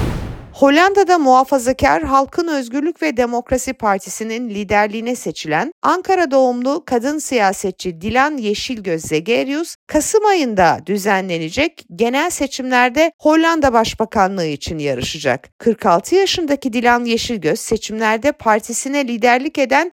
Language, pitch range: Turkish, 205-285 Hz